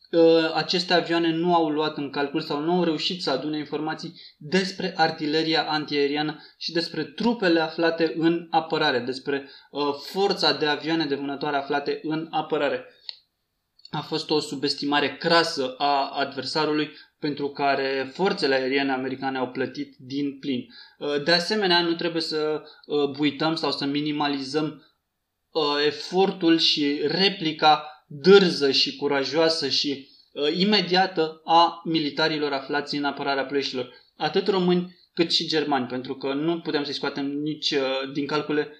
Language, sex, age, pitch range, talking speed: Romanian, male, 20-39, 140-160 Hz, 135 wpm